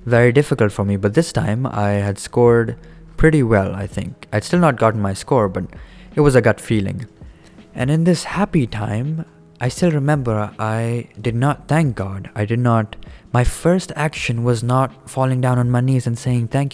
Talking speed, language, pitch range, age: 195 wpm, English, 105-135 Hz, 20-39